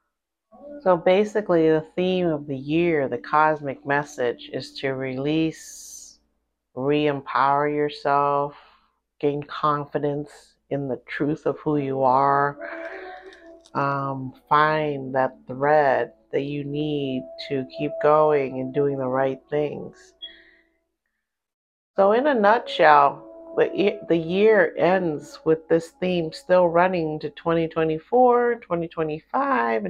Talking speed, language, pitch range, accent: 110 wpm, English, 145-185 Hz, American